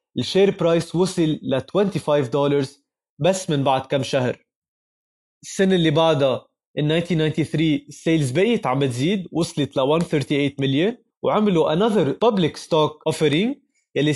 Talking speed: 115 wpm